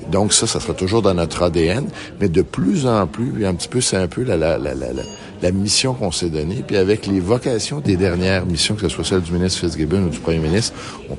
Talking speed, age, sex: 250 wpm, 60-79, male